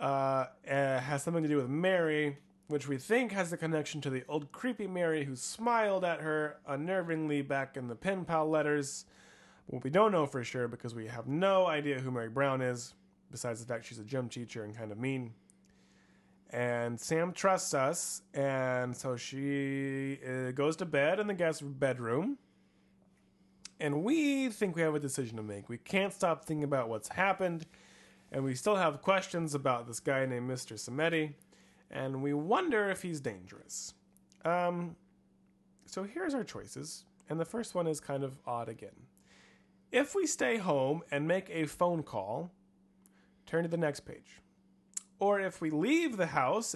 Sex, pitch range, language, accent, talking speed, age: male, 130-190 Hz, English, American, 175 wpm, 20-39